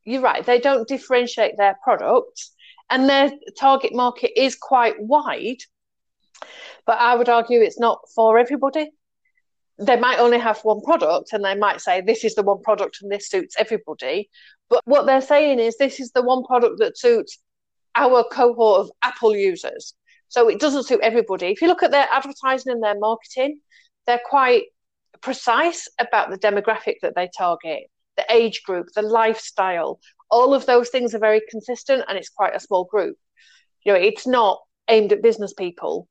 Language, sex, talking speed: English, female, 175 wpm